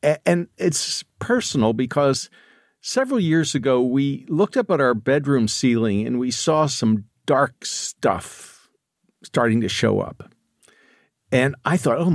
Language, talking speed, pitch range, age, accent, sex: English, 140 wpm, 115-170 Hz, 50-69, American, male